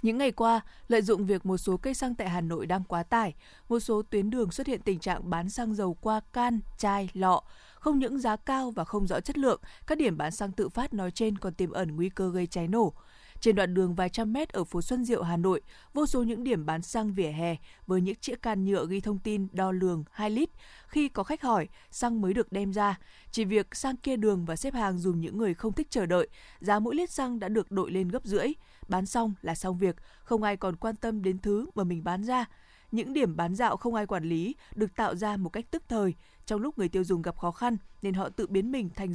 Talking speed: 255 wpm